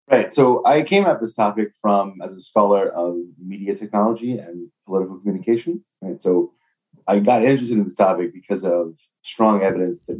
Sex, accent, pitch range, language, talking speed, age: male, American, 95-125 Hz, English, 175 wpm, 30-49